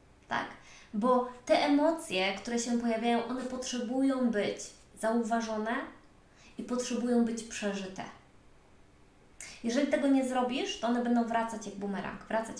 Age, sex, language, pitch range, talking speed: 20-39, female, Polish, 220-285 Hz, 125 wpm